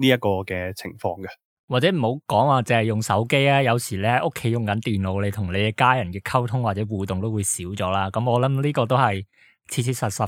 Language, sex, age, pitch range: Chinese, male, 20-39, 105-135 Hz